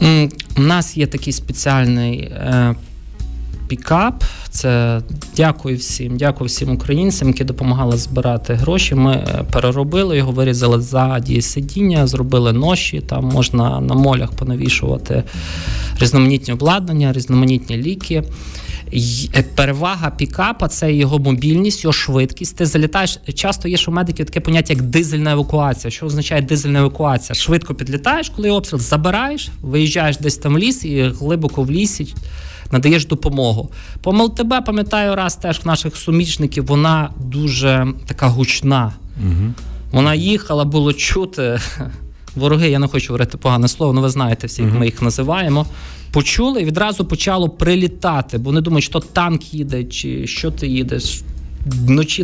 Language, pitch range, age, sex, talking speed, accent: Ukrainian, 125-160 Hz, 20-39, male, 135 wpm, native